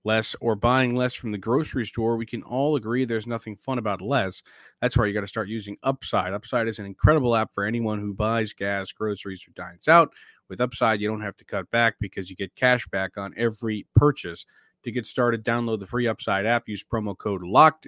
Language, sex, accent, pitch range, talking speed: English, male, American, 100-120 Hz, 225 wpm